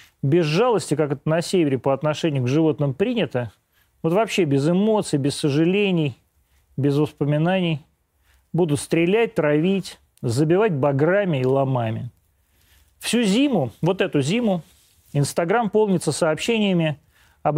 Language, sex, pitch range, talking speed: Russian, male, 140-185 Hz, 120 wpm